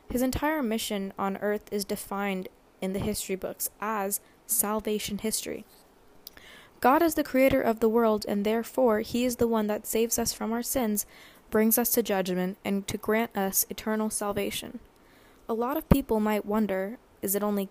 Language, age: English, 10-29